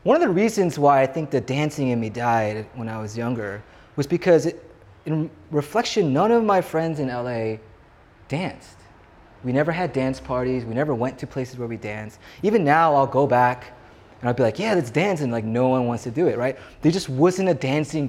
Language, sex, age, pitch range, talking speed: English, male, 20-39, 120-160 Hz, 220 wpm